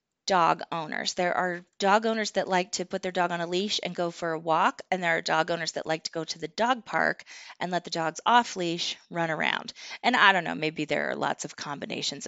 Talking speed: 250 wpm